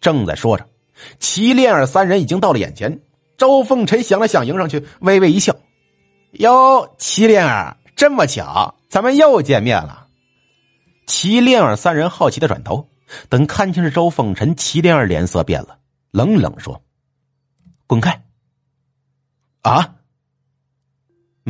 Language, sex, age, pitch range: Chinese, male, 50-69, 130-195 Hz